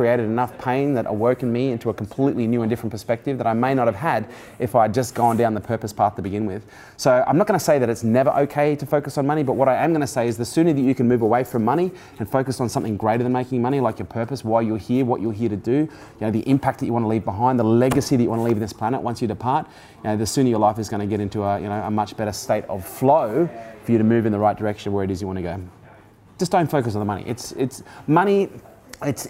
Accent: Australian